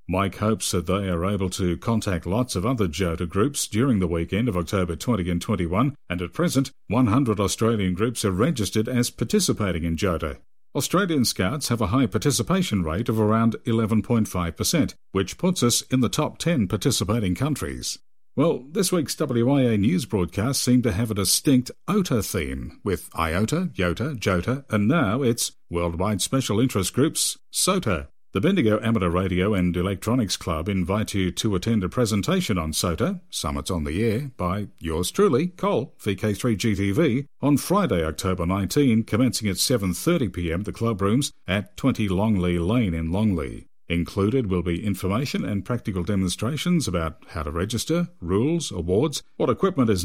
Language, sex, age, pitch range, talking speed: English, male, 50-69, 90-125 Hz, 160 wpm